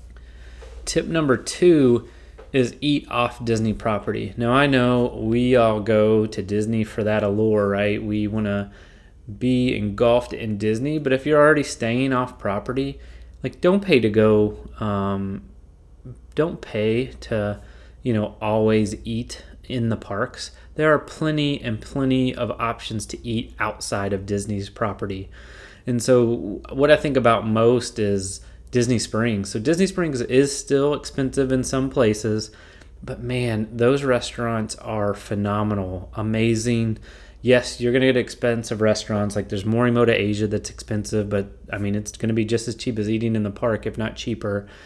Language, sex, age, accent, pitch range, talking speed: English, male, 30-49, American, 100-120 Hz, 160 wpm